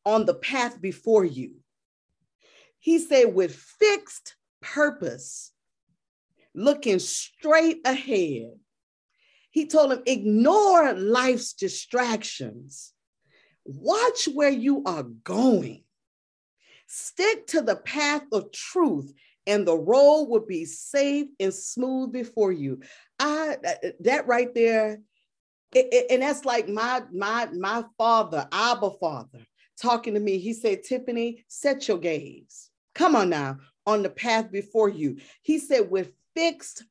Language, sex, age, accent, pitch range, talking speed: English, female, 40-59, American, 210-290 Hz, 125 wpm